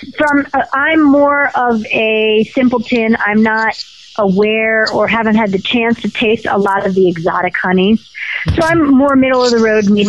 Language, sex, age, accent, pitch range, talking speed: English, female, 40-59, American, 190-235 Hz, 185 wpm